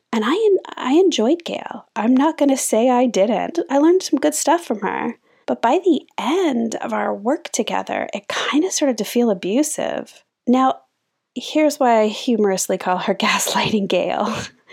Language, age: English, 30-49